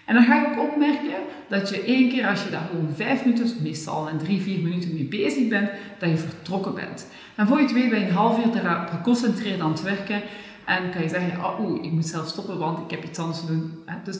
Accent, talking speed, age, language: Dutch, 260 wpm, 40-59, Dutch